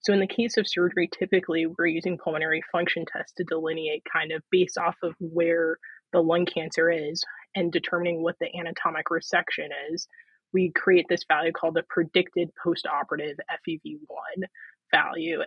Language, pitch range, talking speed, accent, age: English, 160-190 Hz, 160 wpm, American, 20-39